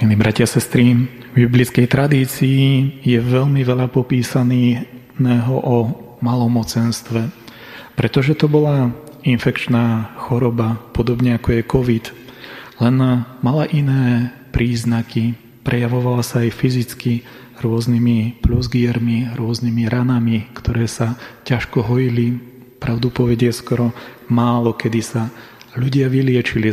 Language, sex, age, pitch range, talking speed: Slovak, male, 30-49, 115-125 Hz, 100 wpm